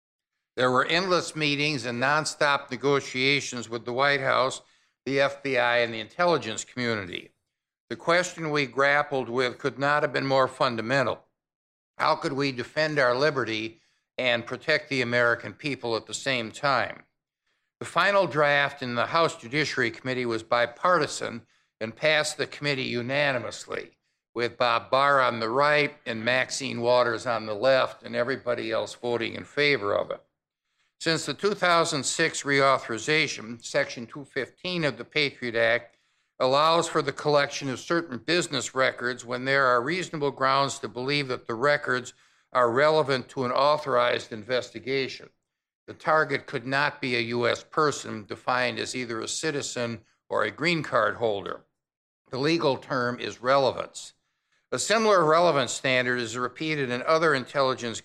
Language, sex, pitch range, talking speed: English, male, 120-145 Hz, 150 wpm